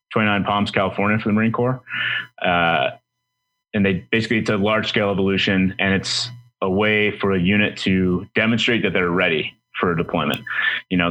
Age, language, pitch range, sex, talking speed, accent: 20-39, English, 90-110 Hz, male, 175 wpm, American